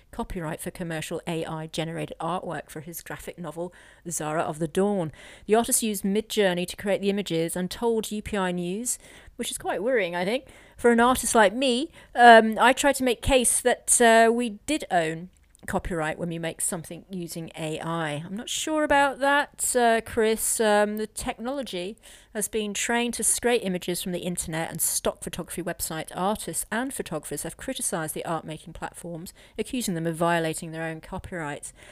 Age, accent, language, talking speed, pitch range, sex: 40-59, British, English, 175 wpm, 165-210 Hz, female